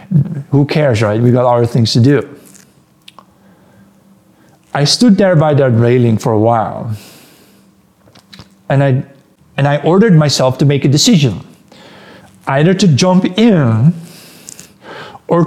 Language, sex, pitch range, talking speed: English, male, 120-160 Hz, 125 wpm